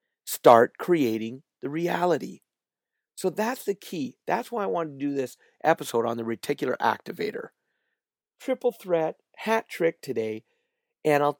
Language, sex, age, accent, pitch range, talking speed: English, male, 40-59, American, 135-200 Hz, 140 wpm